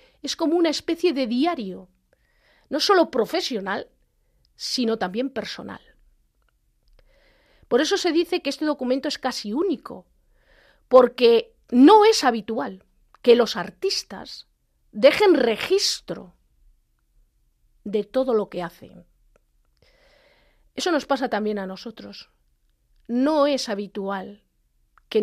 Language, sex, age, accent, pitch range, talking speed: Spanish, female, 40-59, Spanish, 205-310 Hz, 110 wpm